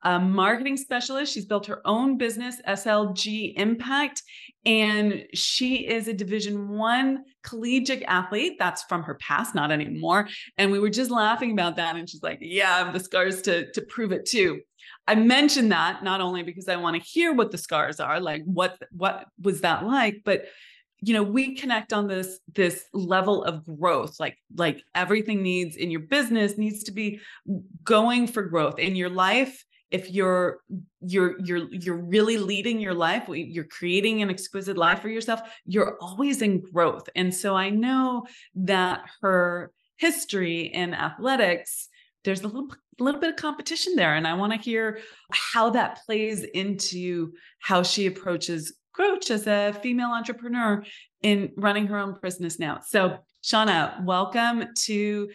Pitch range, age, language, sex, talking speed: 185-235 Hz, 30-49, English, female, 170 wpm